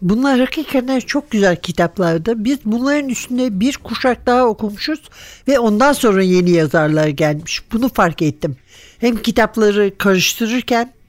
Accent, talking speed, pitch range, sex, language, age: native, 130 wpm, 180-240 Hz, male, Turkish, 60-79